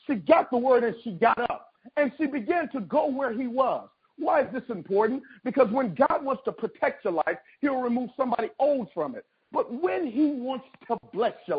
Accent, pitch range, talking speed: American, 230-280 Hz, 210 wpm